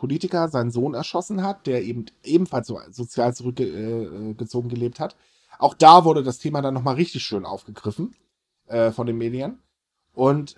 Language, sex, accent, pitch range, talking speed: German, male, German, 120-155 Hz, 155 wpm